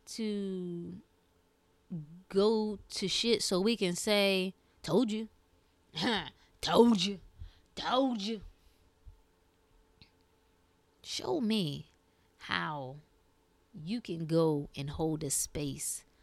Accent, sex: American, female